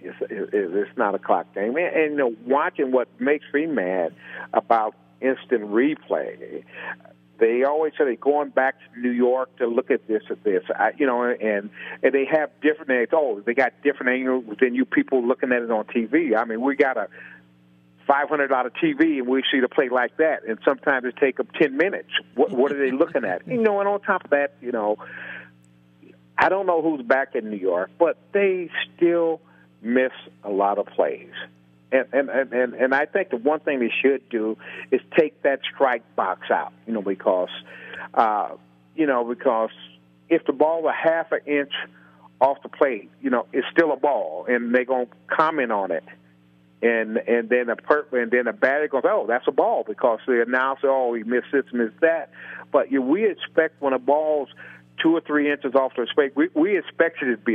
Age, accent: 50-69, American